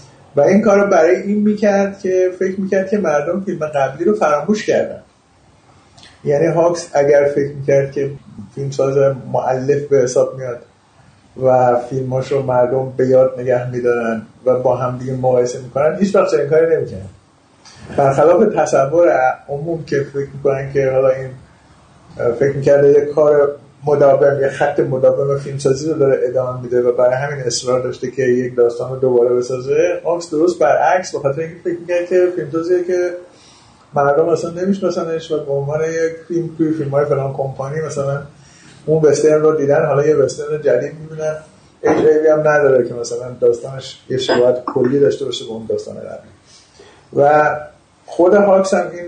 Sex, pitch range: male, 130-175 Hz